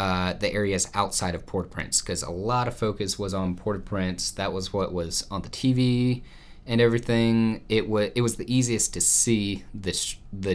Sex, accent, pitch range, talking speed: male, American, 90-110 Hz, 190 wpm